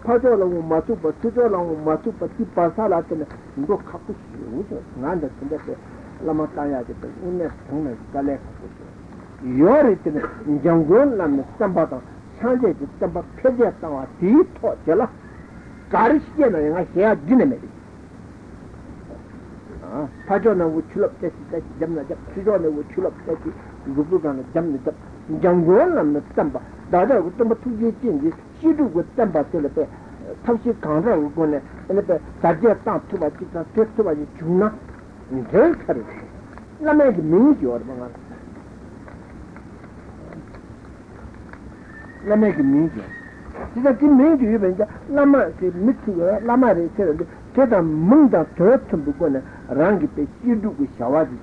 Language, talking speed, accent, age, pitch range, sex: Italian, 35 wpm, Indian, 60-79, 155-240 Hz, male